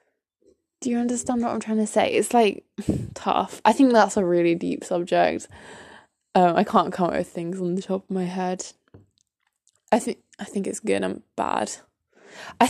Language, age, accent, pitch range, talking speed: English, 10-29, British, 180-215 Hz, 190 wpm